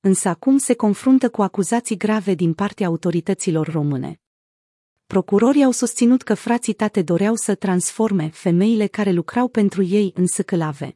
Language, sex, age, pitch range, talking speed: Romanian, female, 30-49, 180-220 Hz, 150 wpm